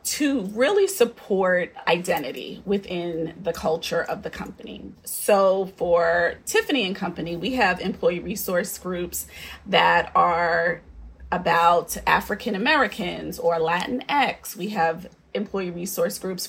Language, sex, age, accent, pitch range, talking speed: English, female, 30-49, American, 175-220 Hz, 110 wpm